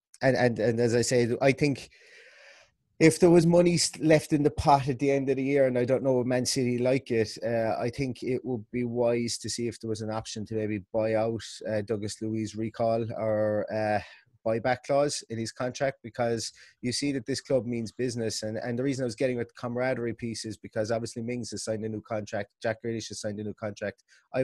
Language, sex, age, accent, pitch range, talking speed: English, male, 20-39, British, 105-125 Hz, 235 wpm